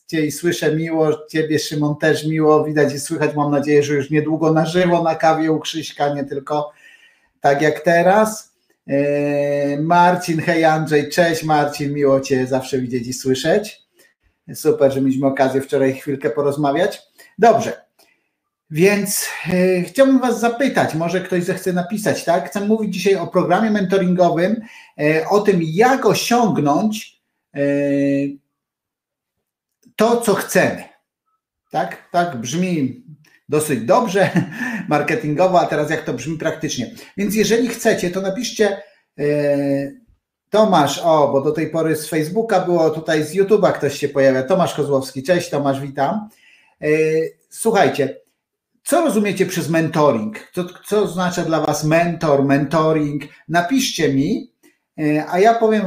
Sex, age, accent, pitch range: male, 50-69, native, 145-190 Hz